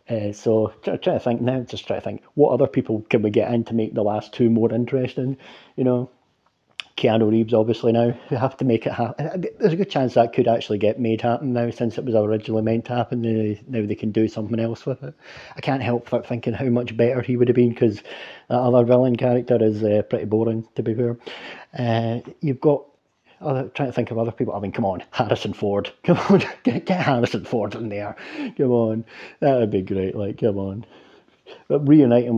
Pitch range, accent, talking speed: 110-130 Hz, British, 225 wpm